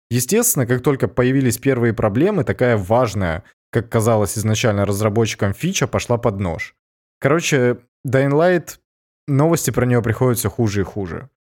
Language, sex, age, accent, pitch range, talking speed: Russian, male, 20-39, native, 105-130 Hz, 130 wpm